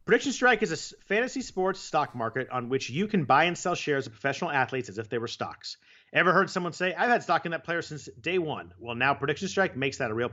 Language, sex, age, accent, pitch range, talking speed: English, male, 40-59, American, 115-180 Hz, 260 wpm